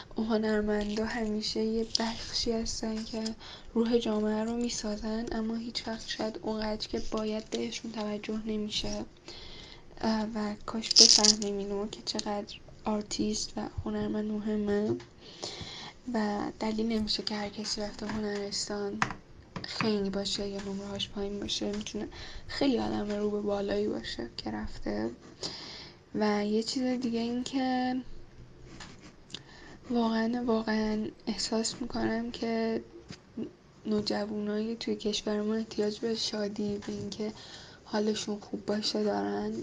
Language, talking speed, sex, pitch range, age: Persian, 115 wpm, female, 205-225 Hz, 10-29